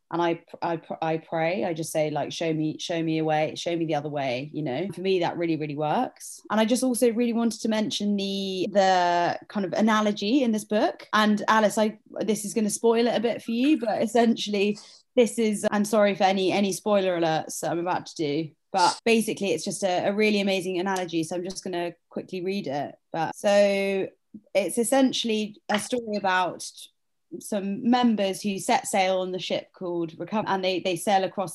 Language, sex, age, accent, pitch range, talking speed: English, female, 20-39, British, 175-220 Hz, 215 wpm